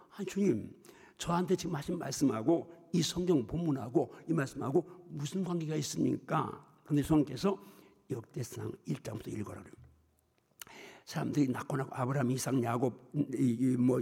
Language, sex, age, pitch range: Korean, male, 60-79, 130-165 Hz